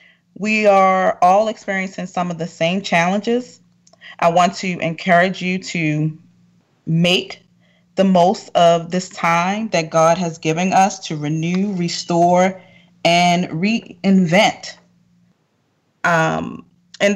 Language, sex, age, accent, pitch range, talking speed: English, female, 20-39, American, 165-190 Hz, 115 wpm